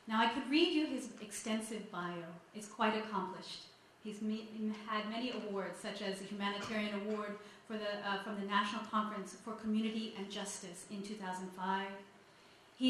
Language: English